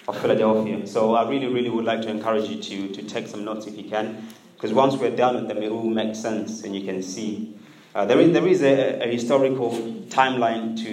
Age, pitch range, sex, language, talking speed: 20-39, 105-120 Hz, male, English, 235 wpm